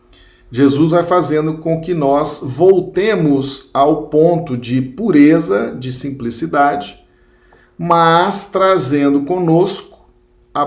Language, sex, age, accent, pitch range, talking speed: Portuguese, male, 50-69, Brazilian, 115-155 Hz, 95 wpm